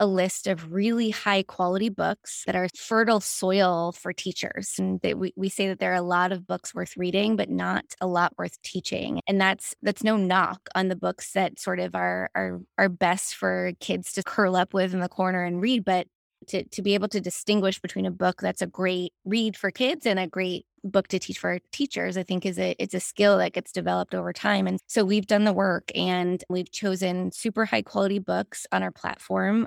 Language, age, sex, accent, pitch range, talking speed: English, 20-39, female, American, 180-210 Hz, 225 wpm